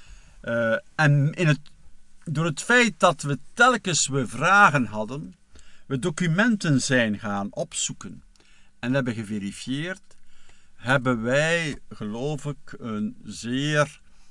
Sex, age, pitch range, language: male, 50-69, 115-160 Hz, Dutch